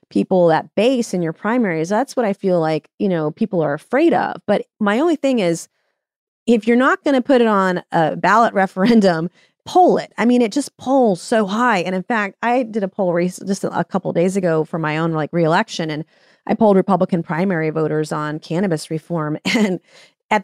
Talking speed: 205 wpm